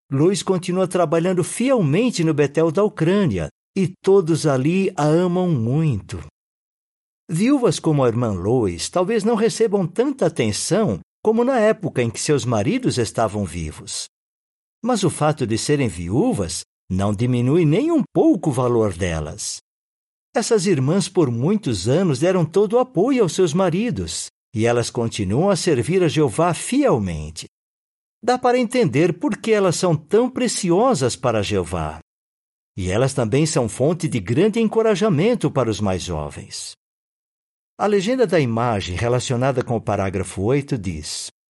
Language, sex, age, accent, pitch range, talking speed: Portuguese, male, 60-79, Brazilian, 115-190 Hz, 145 wpm